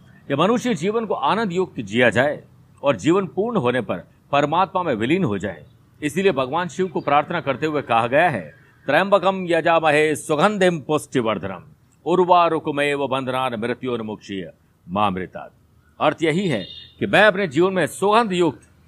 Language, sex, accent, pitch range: Hindi, male, native, 135-185 Hz